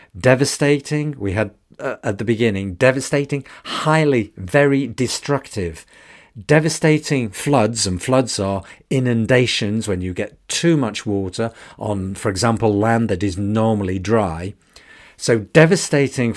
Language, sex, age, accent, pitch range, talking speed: English, male, 50-69, British, 110-145 Hz, 120 wpm